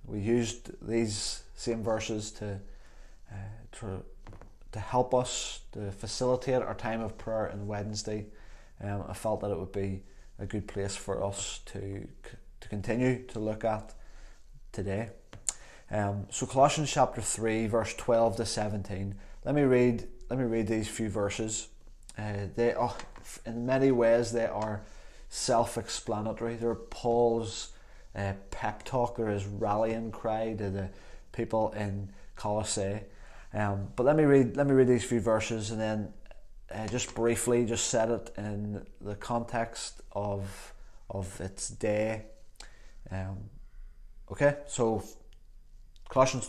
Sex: male